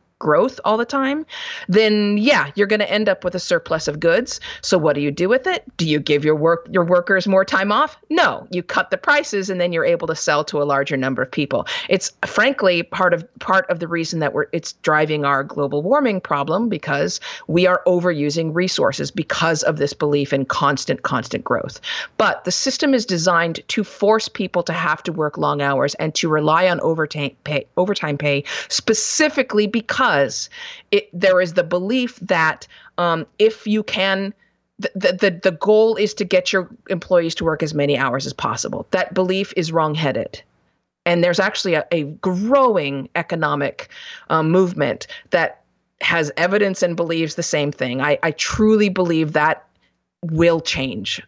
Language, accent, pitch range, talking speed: English, American, 155-205 Hz, 185 wpm